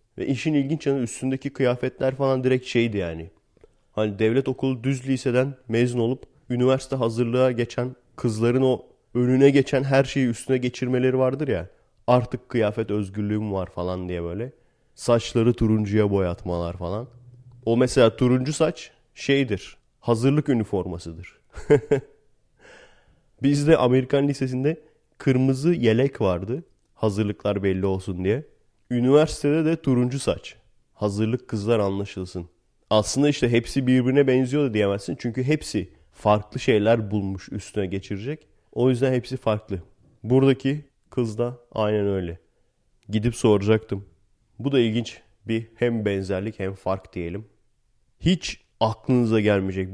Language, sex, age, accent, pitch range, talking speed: Turkish, male, 30-49, native, 105-130 Hz, 125 wpm